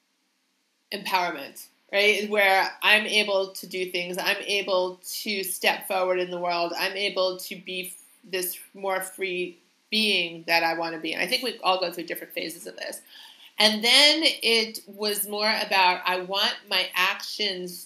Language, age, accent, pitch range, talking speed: English, 30-49, American, 180-220 Hz, 170 wpm